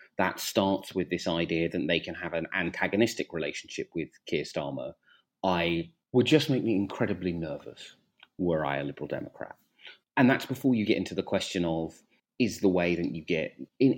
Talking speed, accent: 185 wpm, British